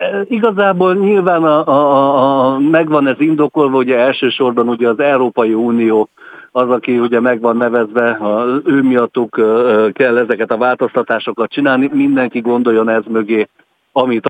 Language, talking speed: Hungarian, 130 wpm